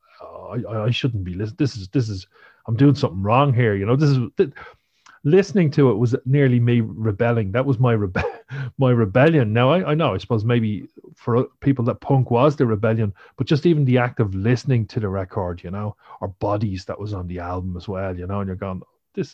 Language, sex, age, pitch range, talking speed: English, male, 40-59, 110-135 Hz, 225 wpm